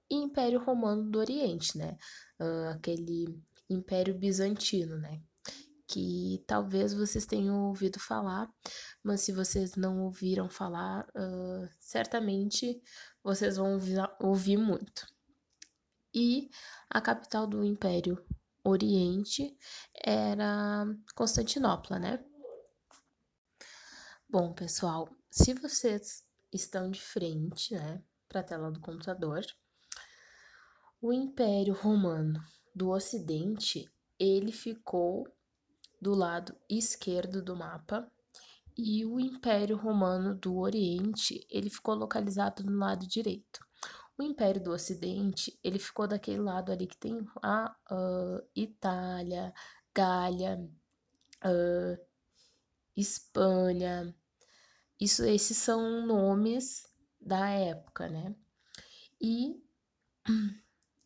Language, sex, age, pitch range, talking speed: Portuguese, female, 10-29, 180-225 Hz, 95 wpm